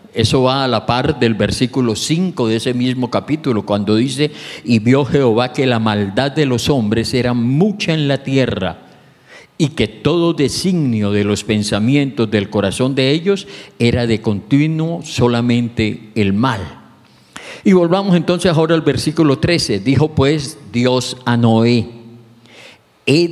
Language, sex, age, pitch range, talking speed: English, male, 50-69, 115-155 Hz, 150 wpm